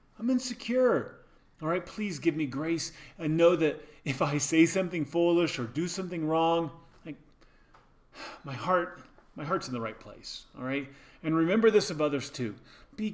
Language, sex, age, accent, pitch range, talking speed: English, male, 30-49, American, 135-190 Hz, 165 wpm